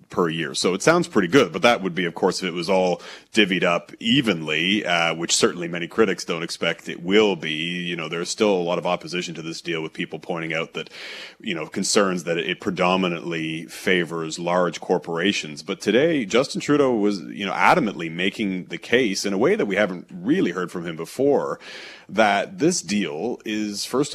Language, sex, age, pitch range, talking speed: English, male, 30-49, 90-110 Hz, 205 wpm